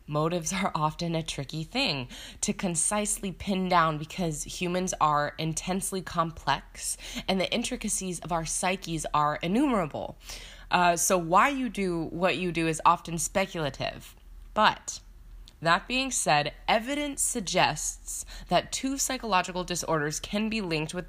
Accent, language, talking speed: American, English, 135 wpm